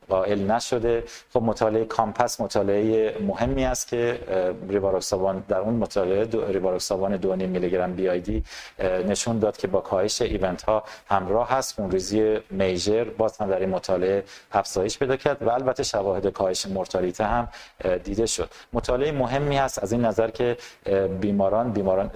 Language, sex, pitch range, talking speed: Persian, male, 95-115 Hz, 145 wpm